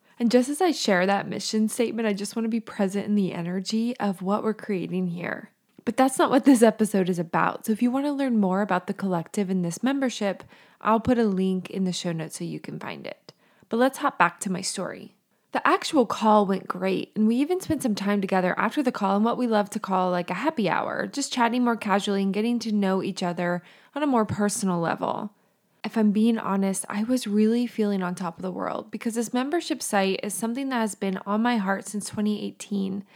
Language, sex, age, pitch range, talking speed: English, female, 20-39, 190-235 Hz, 235 wpm